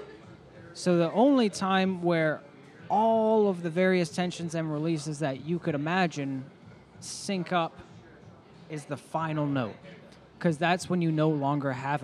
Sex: male